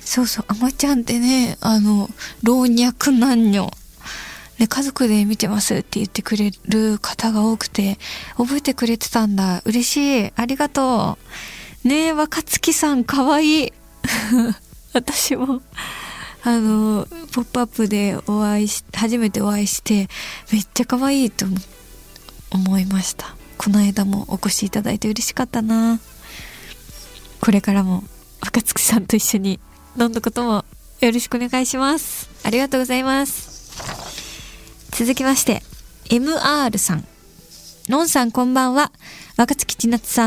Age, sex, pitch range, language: 20-39, female, 210-255 Hz, Japanese